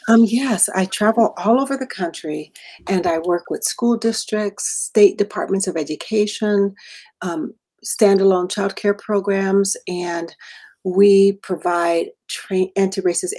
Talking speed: 115 wpm